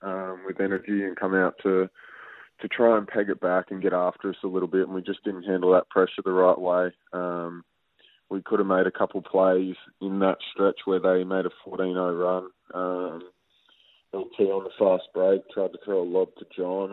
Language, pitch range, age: English, 90-105 Hz, 20-39